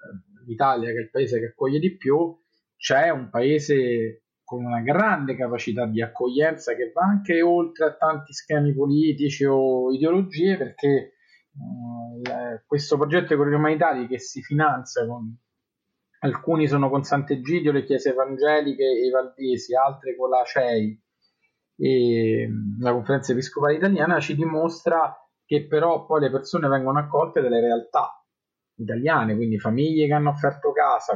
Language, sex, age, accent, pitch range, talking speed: Italian, male, 30-49, native, 120-155 Hz, 150 wpm